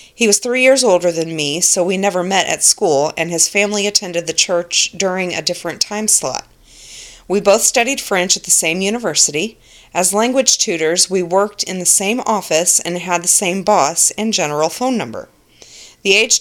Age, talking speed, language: 30-49, 190 wpm, English